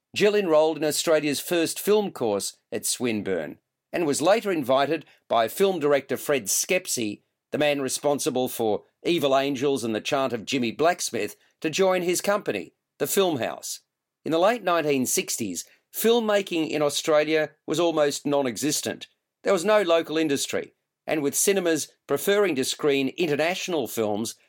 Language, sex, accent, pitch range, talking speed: English, male, Australian, 135-195 Hz, 145 wpm